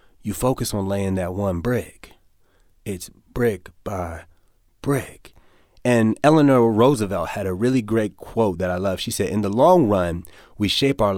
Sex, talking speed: male, 165 wpm